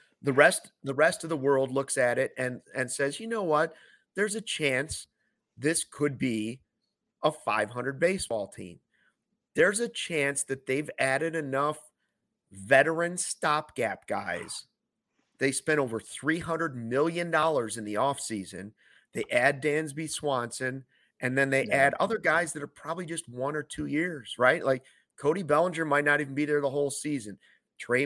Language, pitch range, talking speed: English, 120-155 Hz, 160 wpm